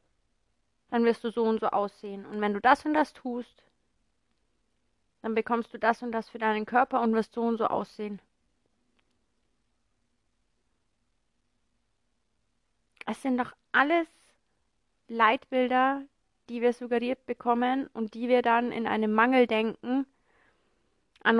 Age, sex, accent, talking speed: 30-49, female, German, 130 wpm